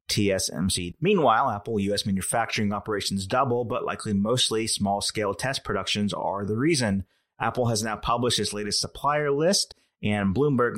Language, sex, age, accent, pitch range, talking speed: English, male, 30-49, American, 95-120 Hz, 145 wpm